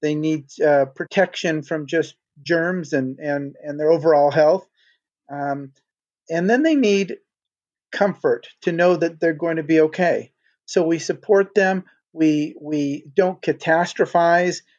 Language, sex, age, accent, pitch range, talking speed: English, male, 40-59, American, 150-180 Hz, 140 wpm